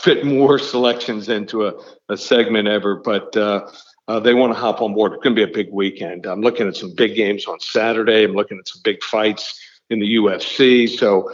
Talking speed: 220 wpm